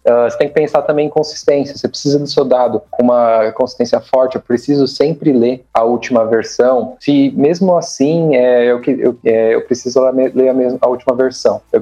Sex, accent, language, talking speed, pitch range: male, Brazilian, Portuguese, 195 wpm, 120-145 Hz